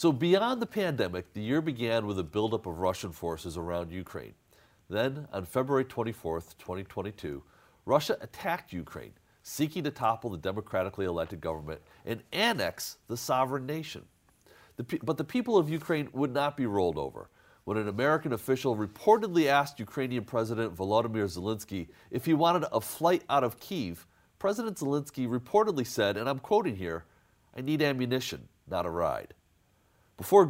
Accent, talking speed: American, 155 wpm